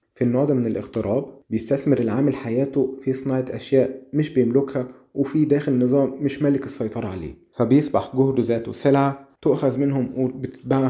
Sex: male